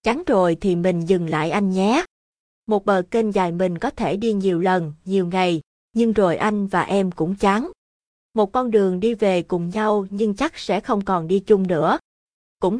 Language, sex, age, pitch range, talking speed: Vietnamese, female, 20-39, 180-220 Hz, 200 wpm